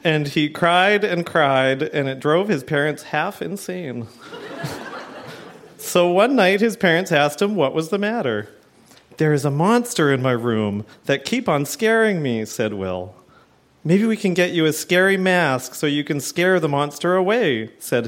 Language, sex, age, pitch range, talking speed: English, male, 40-59, 140-190 Hz, 175 wpm